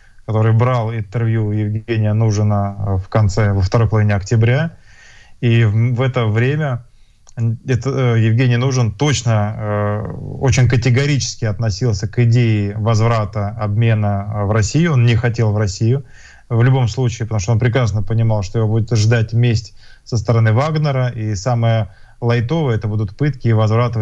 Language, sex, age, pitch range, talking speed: Russian, male, 20-39, 110-120 Hz, 145 wpm